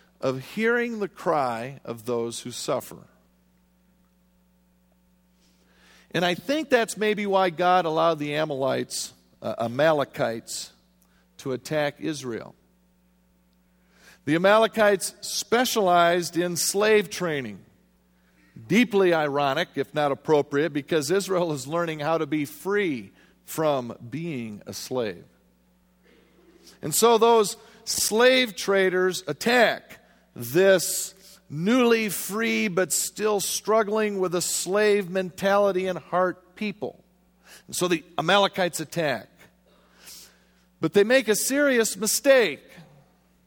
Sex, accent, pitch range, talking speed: male, American, 125-200 Hz, 105 wpm